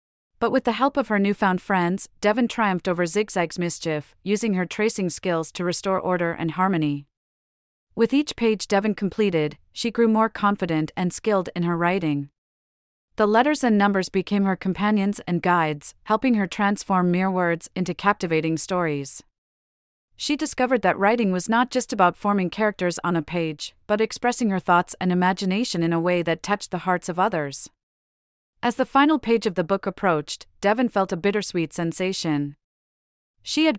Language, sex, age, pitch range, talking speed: English, female, 30-49, 170-215 Hz, 170 wpm